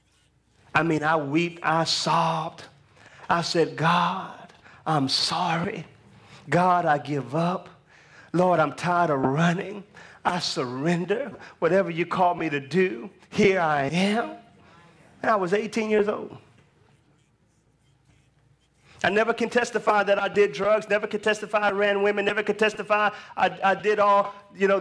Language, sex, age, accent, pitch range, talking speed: English, male, 40-59, American, 165-230 Hz, 145 wpm